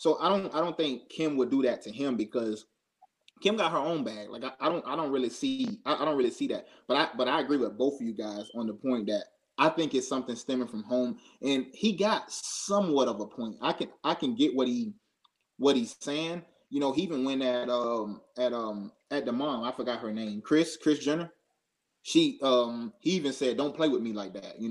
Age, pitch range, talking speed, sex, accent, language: 20-39, 115-150 Hz, 245 wpm, male, American, English